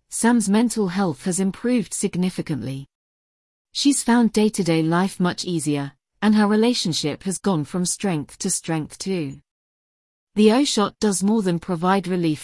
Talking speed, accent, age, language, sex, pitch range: 140 wpm, British, 40-59, English, female, 155-210 Hz